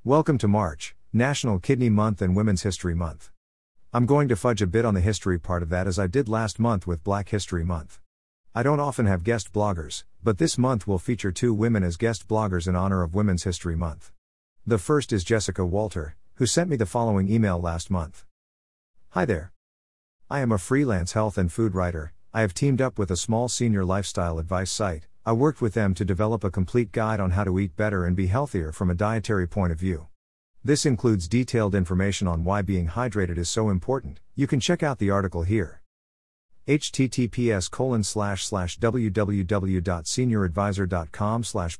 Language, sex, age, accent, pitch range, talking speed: English, male, 50-69, American, 90-115 Hz, 190 wpm